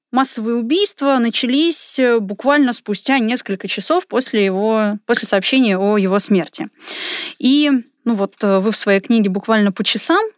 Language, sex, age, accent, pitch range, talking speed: Russian, female, 20-39, native, 200-250 Hz, 125 wpm